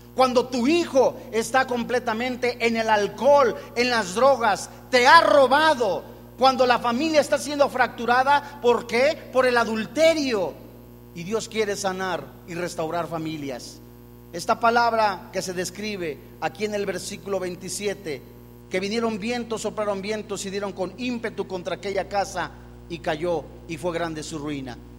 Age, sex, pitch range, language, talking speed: 40-59, male, 165-255 Hz, Spanish, 145 wpm